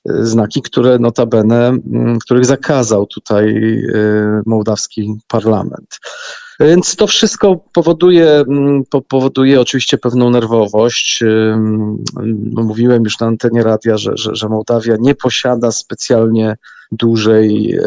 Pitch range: 115-140 Hz